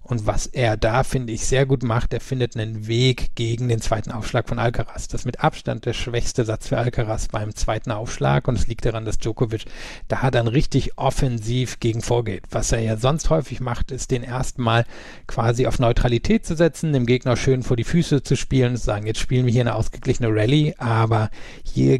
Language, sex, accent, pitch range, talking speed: German, male, German, 110-130 Hz, 215 wpm